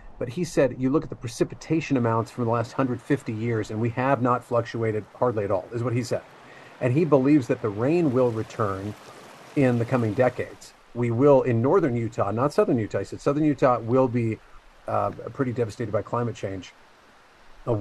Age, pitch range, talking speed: 40-59, 110-135 Hz, 200 wpm